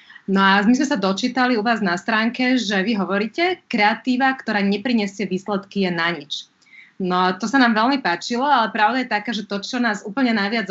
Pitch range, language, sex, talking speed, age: 195-235 Hz, Slovak, female, 205 wpm, 30-49